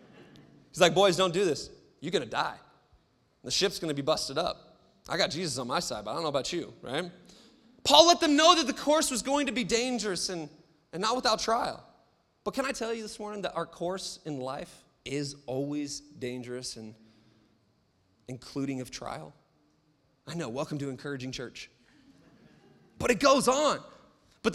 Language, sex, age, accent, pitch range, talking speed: English, male, 30-49, American, 145-220 Hz, 185 wpm